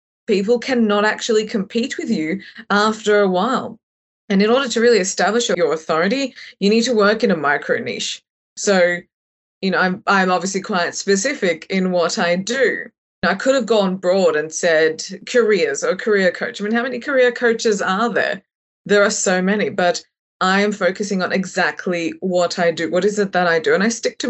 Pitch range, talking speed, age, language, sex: 185-230 Hz, 195 wpm, 20-39, English, female